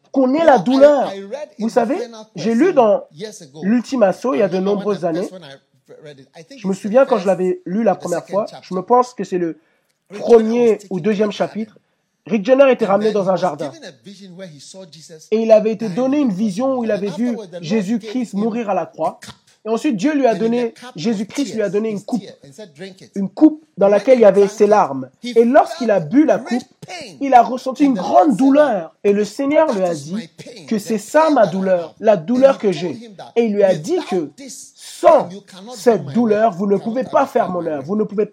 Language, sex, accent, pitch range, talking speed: French, male, French, 195-265 Hz, 195 wpm